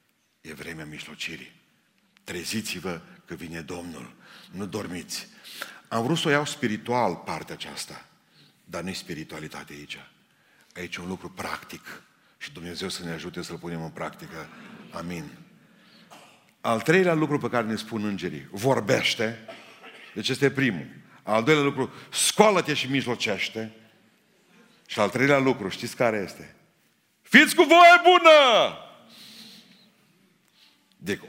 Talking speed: 130 wpm